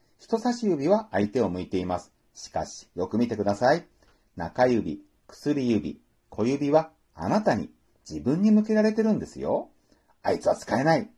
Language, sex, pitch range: Japanese, male, 110-170 Hz